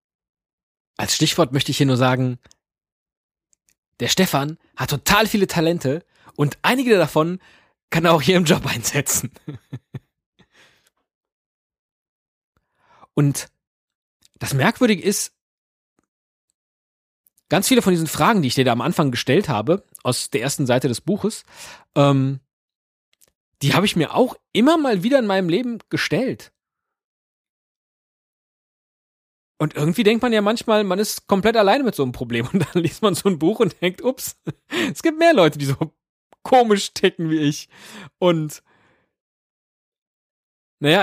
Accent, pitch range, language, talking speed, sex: German, 140-210 Hz, German, 140 wpm, male